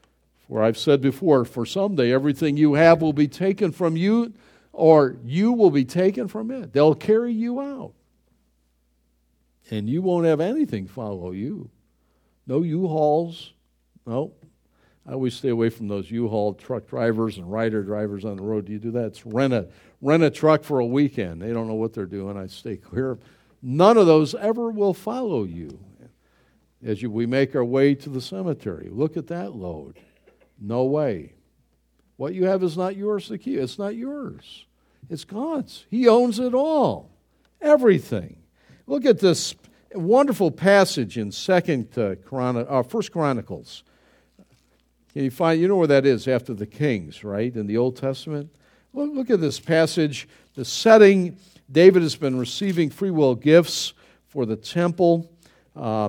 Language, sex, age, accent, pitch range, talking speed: English, male, 60-79, American, 110-180 Hz, 165 wpm